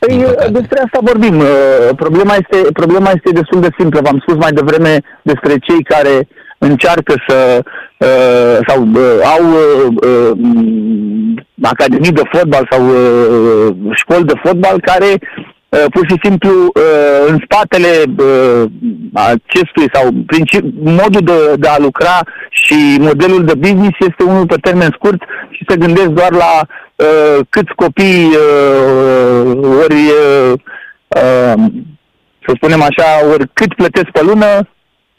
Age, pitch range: 50-69, 150-190 Hz